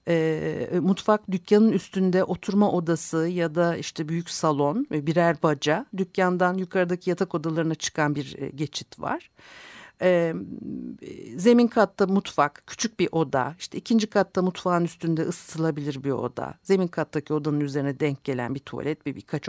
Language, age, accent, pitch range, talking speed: Turkish, 60-79, native, 145-190 Hz, 140 wpm